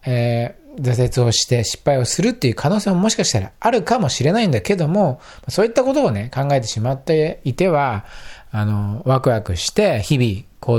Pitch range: 105-160 Hz